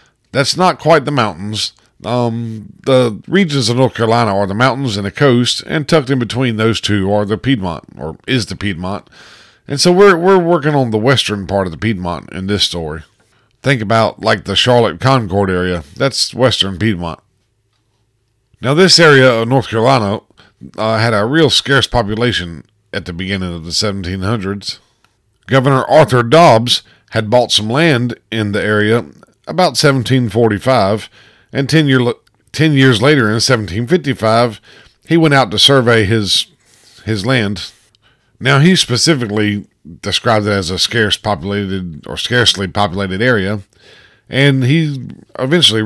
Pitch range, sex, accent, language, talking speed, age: 105-130 Hz, male, American, English, 150 wpm, 50-69